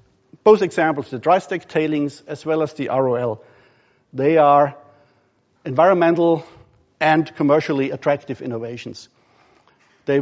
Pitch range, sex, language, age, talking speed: 125-150 Hz, male, English, 50-69, 110 wpm